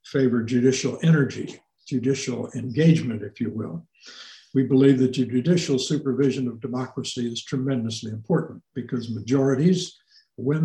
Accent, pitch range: American, 125-160 Hz